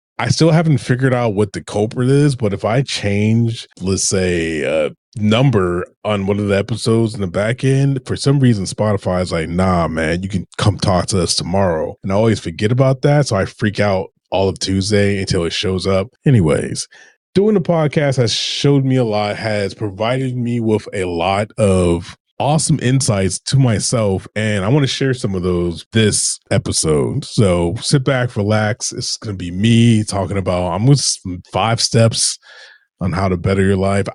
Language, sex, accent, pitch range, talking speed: English, male, American, 95-125 Hz, 190 wpm